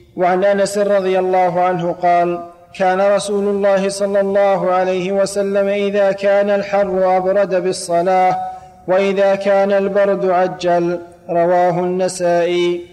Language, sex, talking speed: Arabic, male, 110 wpm